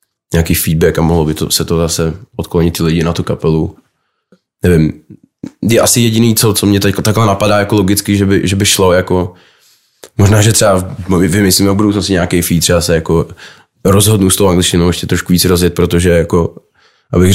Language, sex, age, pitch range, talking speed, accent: Czech, male, 20-39, 85-90 Hz, 190 wpm, native